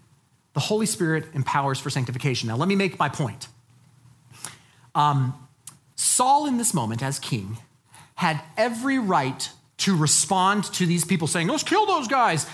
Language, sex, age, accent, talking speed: English, male, 30-49, American, 155 wpm